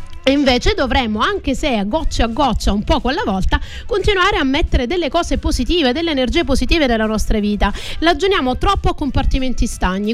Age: 30-49